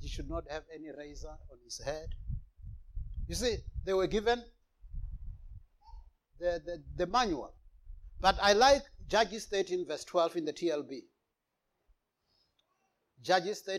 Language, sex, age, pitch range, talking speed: English, male, 60-79, 170-250 Hz, 125 wpm